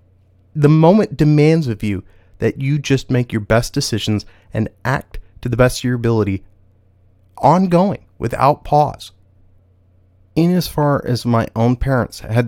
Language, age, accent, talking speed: English, 30-49, American, 150 wpm